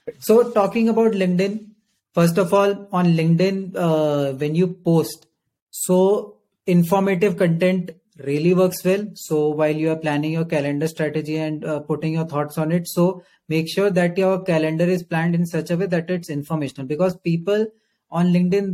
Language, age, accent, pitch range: Hindi, 30-49, native, 150-180 Hz